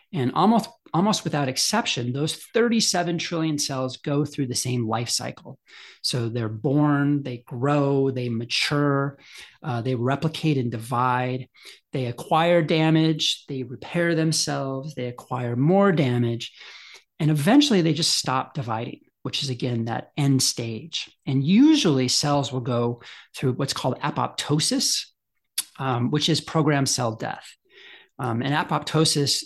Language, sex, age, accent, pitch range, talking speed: English, male, 40-59, American, 120-155 Hz, 135 wpm